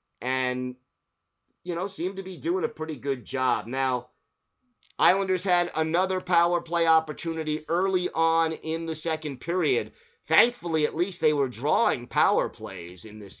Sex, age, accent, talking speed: male, 30-49, American, 150 wpm